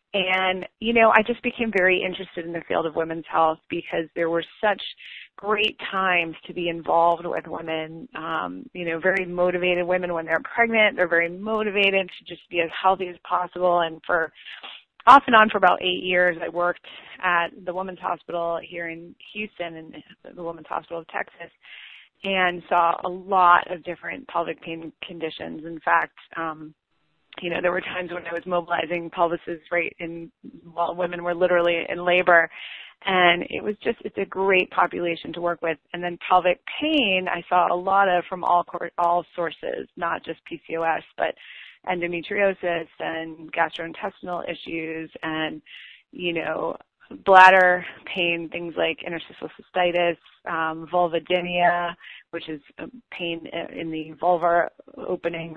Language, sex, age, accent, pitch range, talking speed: English, female, 30-49, American, 165-185 Hz, 160 wpm